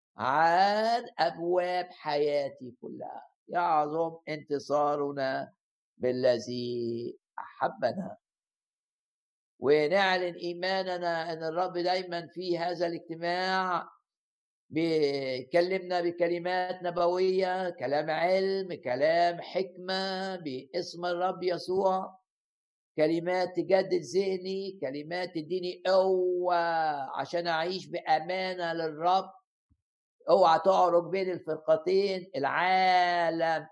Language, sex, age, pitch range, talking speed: Arabic, male, 60-79, 170-195 Hz, 75 wpm